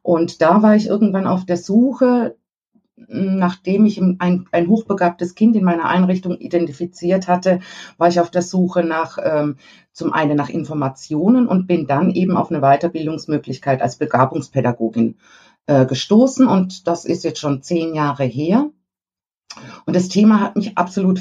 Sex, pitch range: female, 160-195 Hz